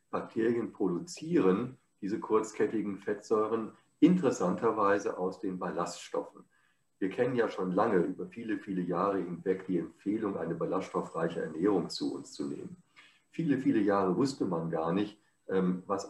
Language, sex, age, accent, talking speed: German, male, 50-69, German, 135 wpm